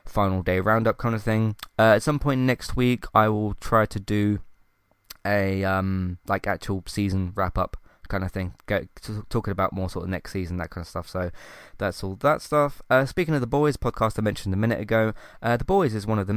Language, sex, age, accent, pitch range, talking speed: English, male, 20-39, British, 95-115 Hz, 225 wpm